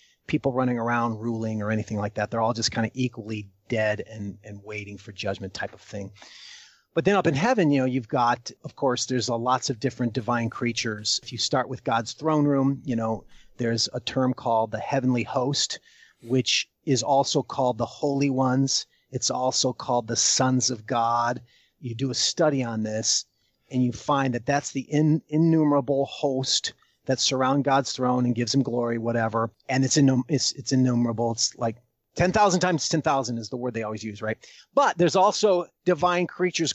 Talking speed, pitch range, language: 190 wpm, 115-145 Hz, English